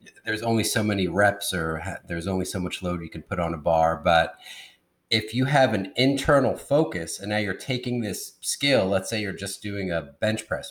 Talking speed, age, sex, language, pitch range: 215 wpm, 30-49, male, English, 90-110 Hz